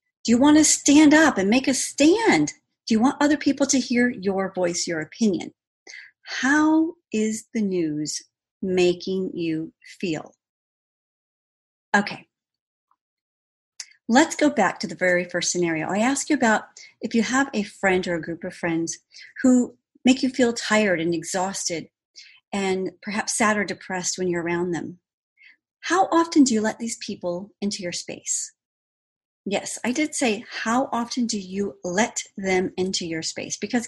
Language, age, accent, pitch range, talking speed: English, 40-59, American, 180-265 Hz, 160 wpm